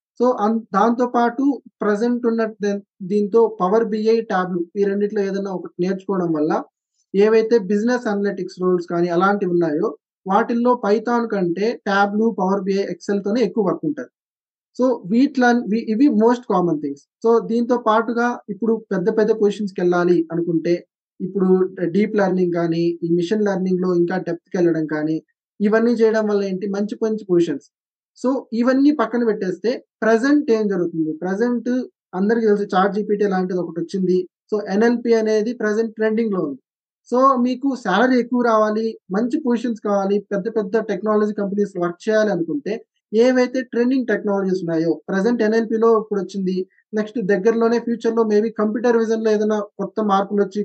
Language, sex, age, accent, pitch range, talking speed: Telugu, male, 20-39, native, 190-230 Hz, 140 wpm